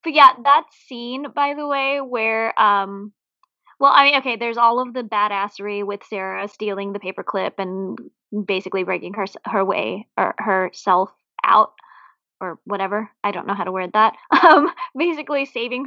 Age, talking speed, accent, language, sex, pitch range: 20-39, 165 wpm, American, English, female, 195-240 Hz